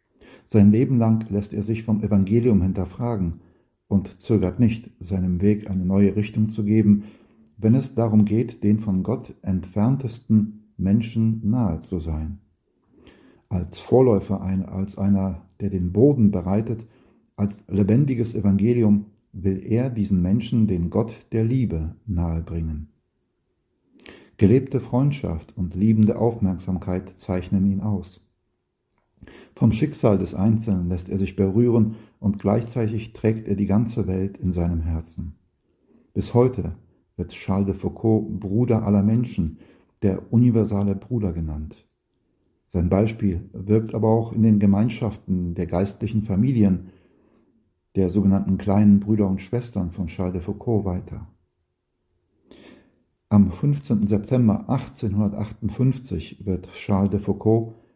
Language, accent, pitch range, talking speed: German, German, 95-110 Hz, 125 wpm